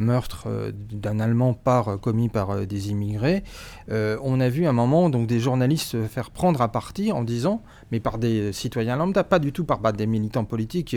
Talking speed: 210 wpm